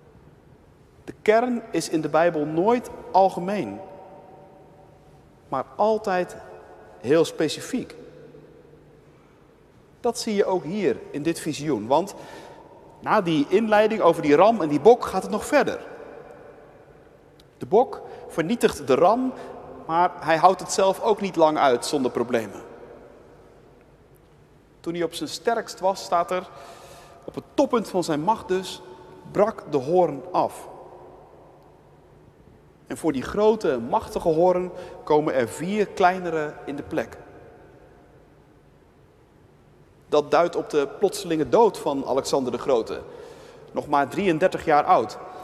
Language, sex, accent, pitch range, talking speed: Dutch, male, Dutch, 165-230 Hz, 130 wpm